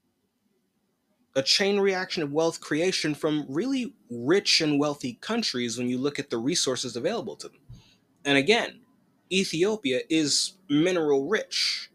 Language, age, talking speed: English, 20-39, 135 wpm